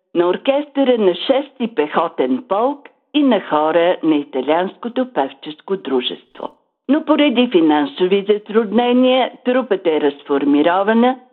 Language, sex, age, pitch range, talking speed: Bulgarian, female, 50-69, 165-250 Hz, 105 wpm